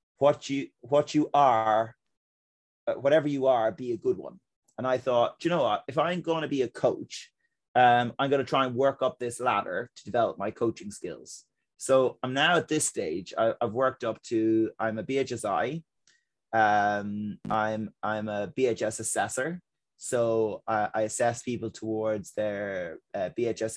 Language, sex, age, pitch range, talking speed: English, male, 30-49, 105-125 Hz, 170 wpm